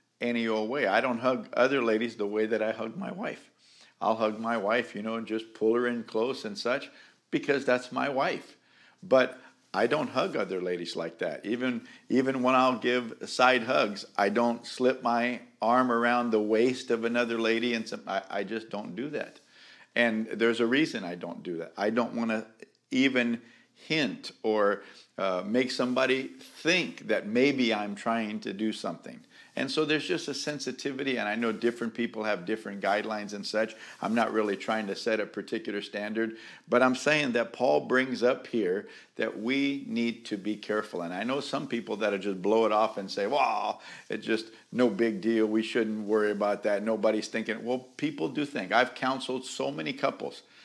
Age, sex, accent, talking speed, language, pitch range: 50-69, male, American, 200 wpm, English, 110-125 Hz